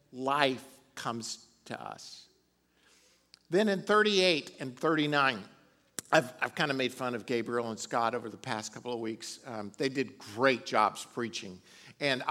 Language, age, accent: English, 50-69, American